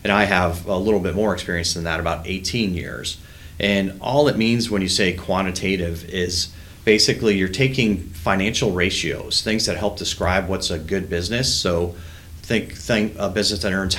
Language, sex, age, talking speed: English, male, 30-49, 180 wpm